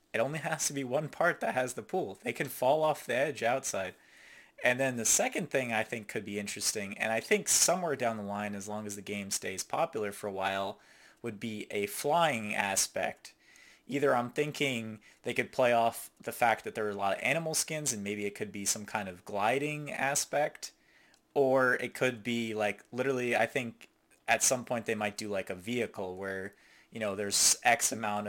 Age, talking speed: 20-39, 210 wpm